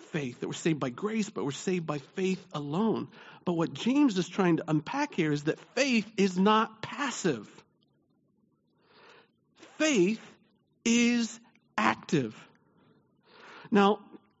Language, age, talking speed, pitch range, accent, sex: English, 50-69, 125 wpm, 160-210 Hz, American, male